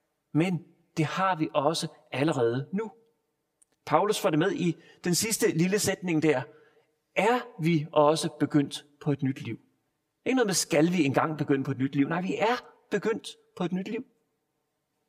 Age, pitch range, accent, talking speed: 40-59, 150-180 Hz, native, 175 wpm